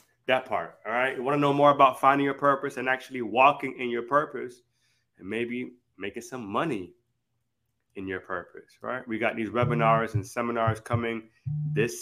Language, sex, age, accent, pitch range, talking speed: English, male, 20-39, American, 115-140 Hz, 180 wpm